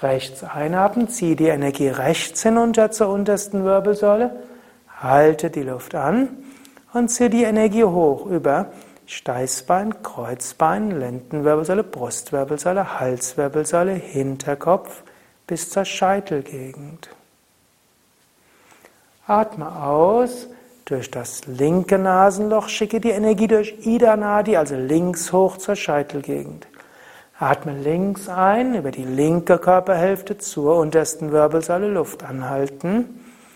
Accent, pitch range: German, 140-210 Hz